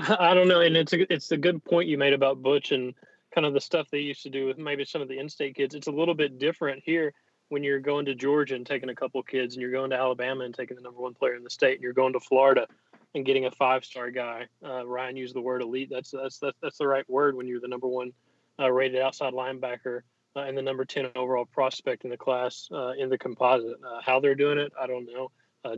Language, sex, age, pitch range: English, male, 30-49, 130-140 Hz